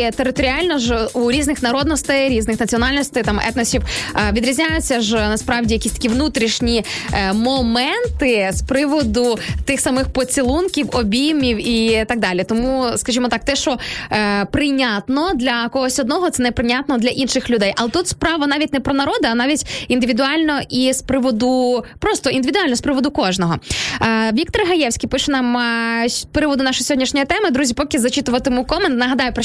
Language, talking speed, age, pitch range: Ukrainian, 145 wpm, 20-39, 235-290 Hz